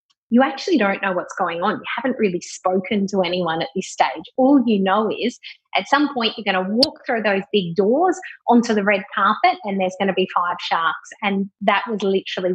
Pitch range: 200-255 Hz